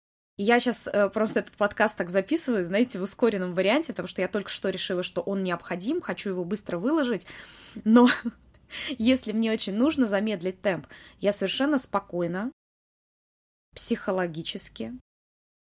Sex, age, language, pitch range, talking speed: female, 20-39, Russian, 185-235 Hz, 135 wpm